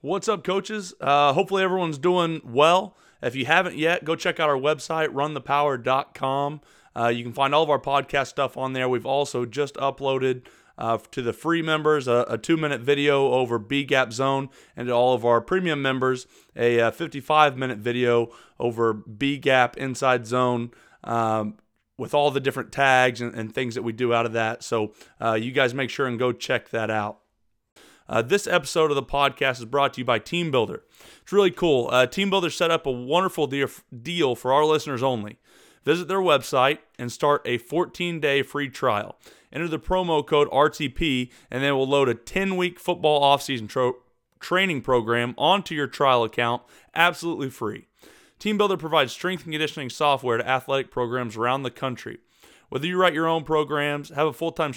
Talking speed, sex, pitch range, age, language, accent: 185 wpm, male, 125-160 Hz, 30-49, English, American